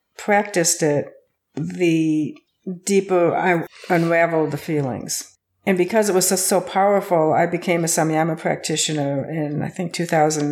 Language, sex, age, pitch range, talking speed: English, female, 60-79, 155-185 Hz, 145 wpm